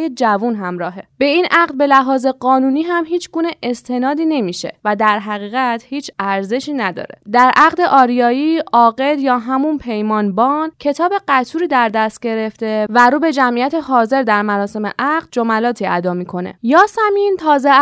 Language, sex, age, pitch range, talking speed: Persian, female, 10-29, 225-300 Hz, 155 wpm